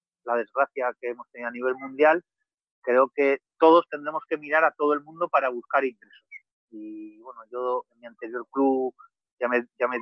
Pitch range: 120-145 Hz